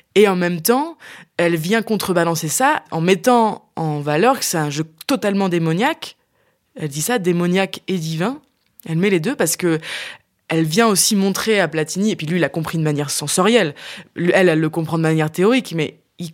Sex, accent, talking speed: female, French, 195 wpm